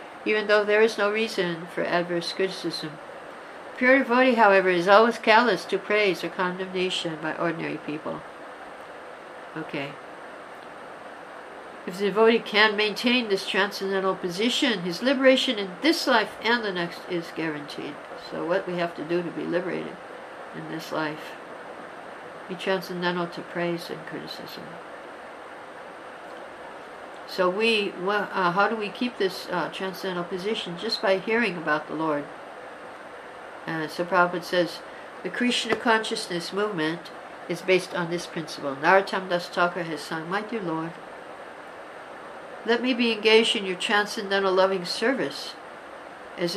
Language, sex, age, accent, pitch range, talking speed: English, female, 60-79, American, 170-215 Hz, 140 wpm